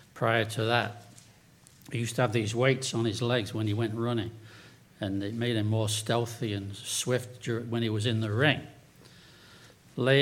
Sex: male